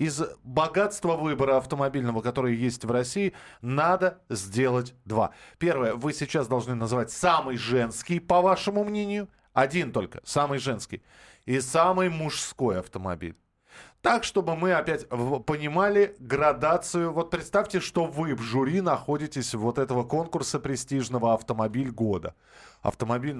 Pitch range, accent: 115-165 Hz, native